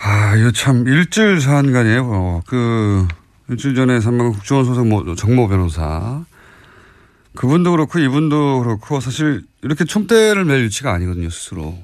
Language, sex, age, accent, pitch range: Korean, male, 40-59, native, 110-160 Hz